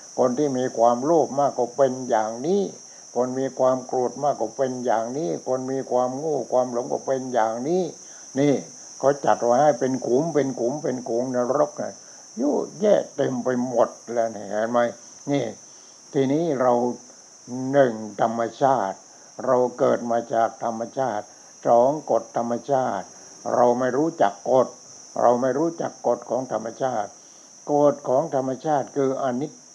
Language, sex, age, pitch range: English, male, 60-79, 120-135 Hz